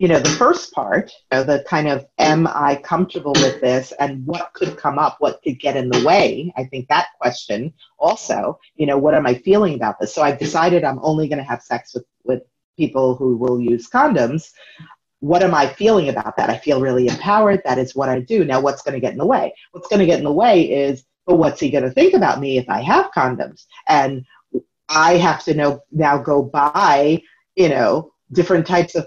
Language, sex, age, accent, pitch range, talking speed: English, female, 30-49, American, 140-180 Hz, 230 wpm